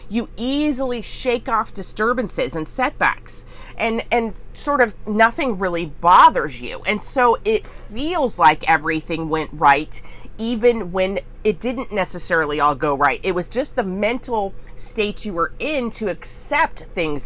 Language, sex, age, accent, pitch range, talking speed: English, female, 30-49, American, 155-240 Hz, 150 wpm